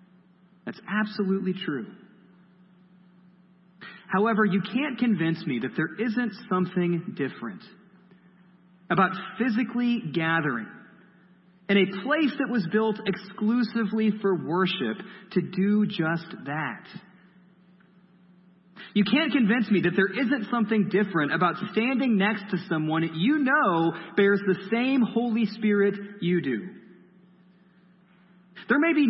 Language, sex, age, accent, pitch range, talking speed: English, male, 30-49, American, 180-210 Hz, 115 wpm